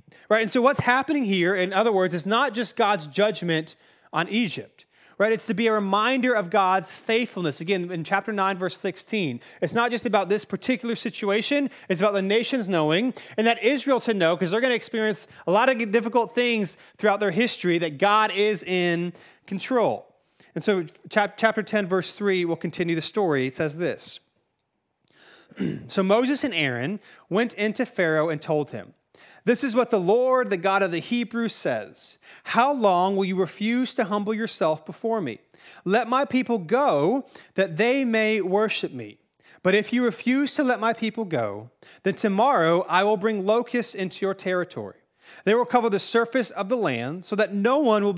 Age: 30-49